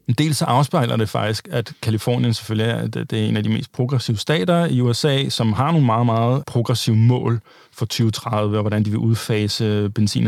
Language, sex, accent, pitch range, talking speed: Danish, male, native, 120-155 Hz, 205 wpm